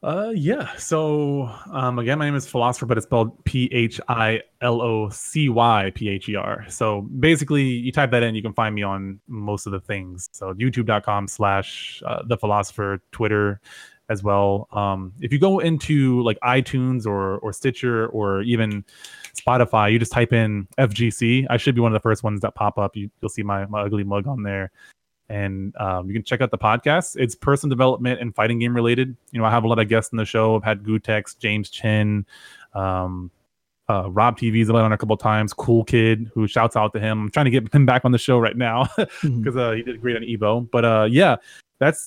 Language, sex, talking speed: English, male, 205 wpm